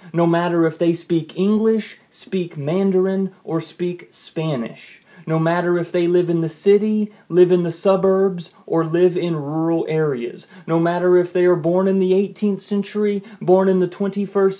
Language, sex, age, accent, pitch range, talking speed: English, male, 30-49, American, 160-190 Hz, 175 wpm